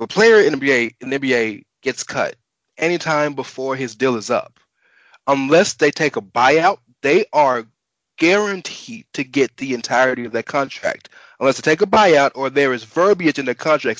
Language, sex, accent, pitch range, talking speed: English, male, American, 120-175 Hz, 180 wpm